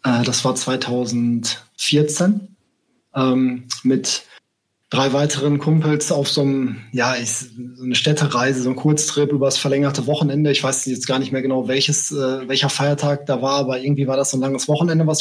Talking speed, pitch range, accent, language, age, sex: 175 wpm, 135-160 Hz, German, German, 20-39, male